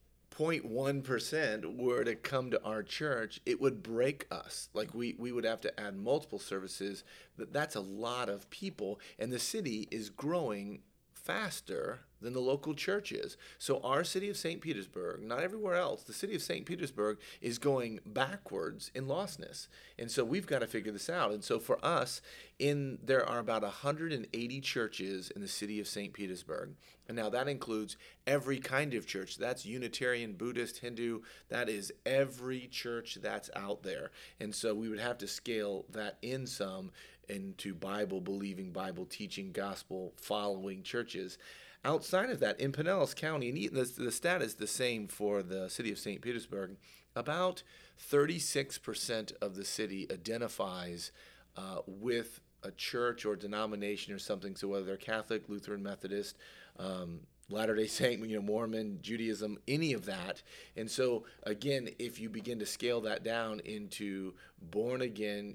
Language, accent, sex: English, American, male